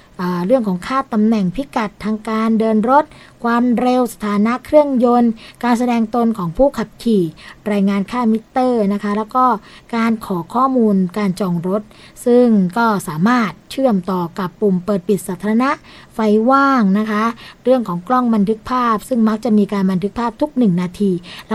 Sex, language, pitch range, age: female, Thai, 195-245 Hz, 20-39